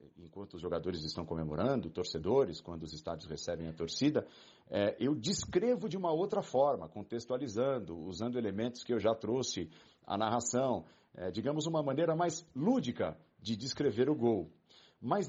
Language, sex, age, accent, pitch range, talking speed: Portuguese, male, 40-59, Brazilian, 110-150 Hz, 145 wpm